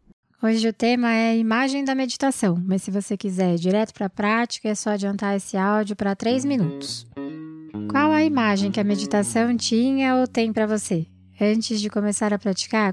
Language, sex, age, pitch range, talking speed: Portuguese, female, 20-39, 195-230 Hz, 190 wpm